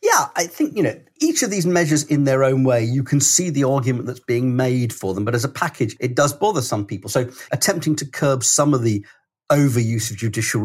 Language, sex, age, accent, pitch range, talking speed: English, male, 40-59, British, 115-145 Hz, 235 wpm